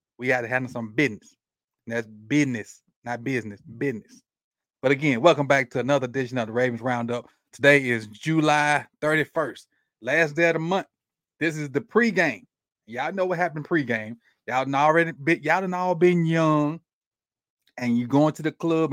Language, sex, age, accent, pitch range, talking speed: English, male, 30-49, American, 140-210 Hz, 165 wpm